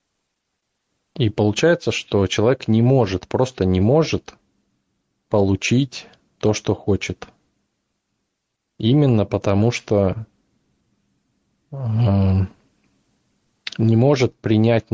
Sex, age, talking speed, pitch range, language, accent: male, 20-39, 80 wpm, 100-115 Hz, Russian, native